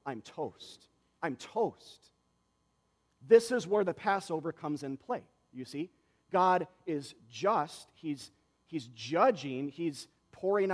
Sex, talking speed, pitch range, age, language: male, 125 wpm, 105-155 Hz, 40-59, English